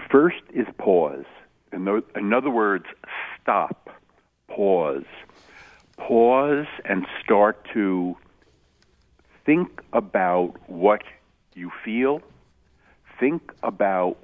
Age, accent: 60-79, American